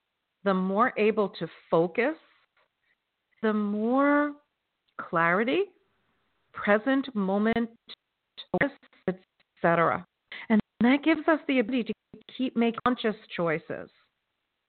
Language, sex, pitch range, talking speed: English, female, 185-250 Hz, 95 wpm